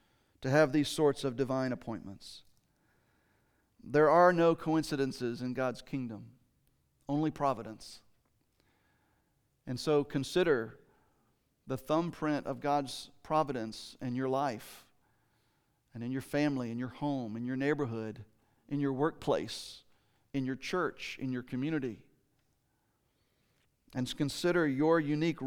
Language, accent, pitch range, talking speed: English, American, 130-170 Hz, 120 wpm